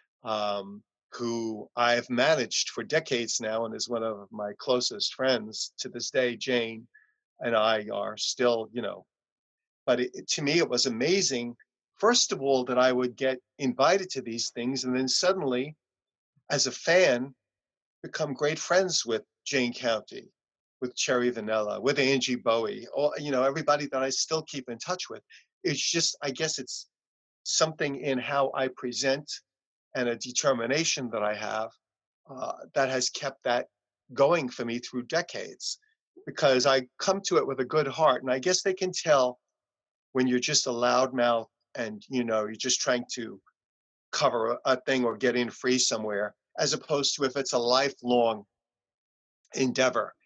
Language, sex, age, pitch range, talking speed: English, male, 50-69, 120-140 Hz, 170 wpm